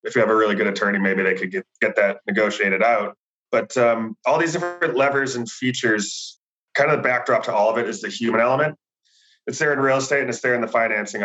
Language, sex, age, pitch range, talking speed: English, male, 20-39, 105-120 Hz, 245 wpm